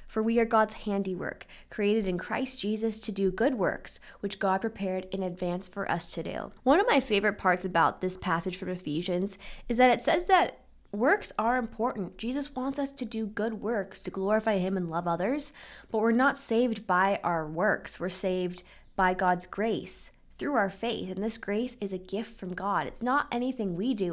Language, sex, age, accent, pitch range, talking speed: English, female, 10-29, American, 185-240 Hz, 200 wpm